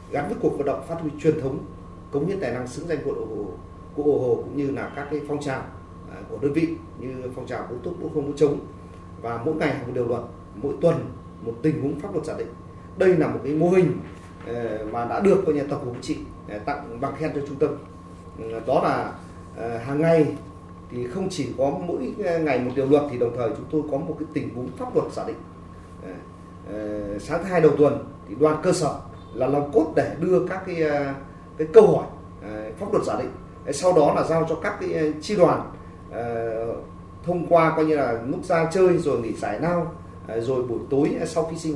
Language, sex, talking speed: Vietnamese, male, 215 wpm